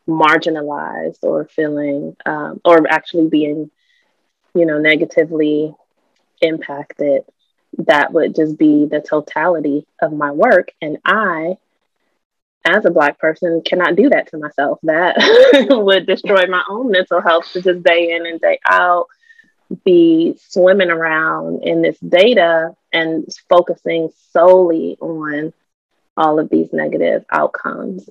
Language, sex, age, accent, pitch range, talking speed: English, female, 20-39, American, 150-180 Hz, 130 wpm